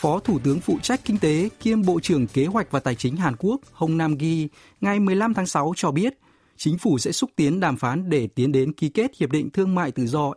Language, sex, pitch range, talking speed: Vietnamese, male, 135-185 Hz, 255 wpm